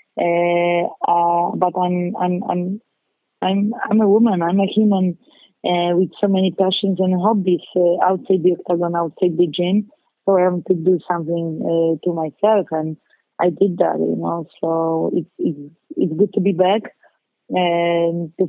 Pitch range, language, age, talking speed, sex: 170-190 Hz, English, 20-39, 165 wpm, female